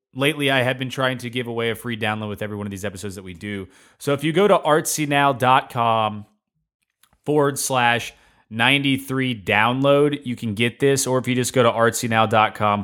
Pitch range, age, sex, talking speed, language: 110-150 Hz, 30-49, male, 190 wpm, English